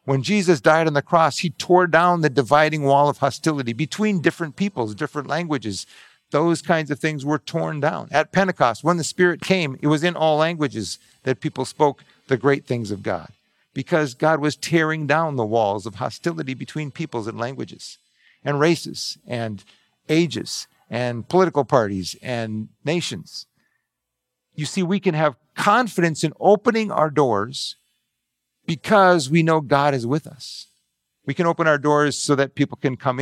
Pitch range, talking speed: 120-165 Hz, 170 wpm